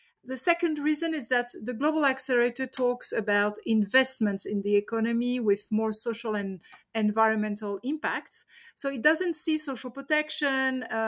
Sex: female